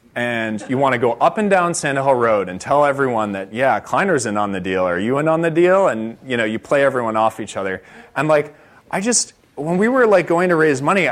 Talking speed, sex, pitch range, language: 260 wpm, male, 110-170 Hz, English